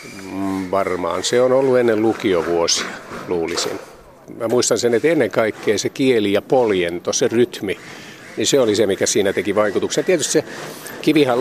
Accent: native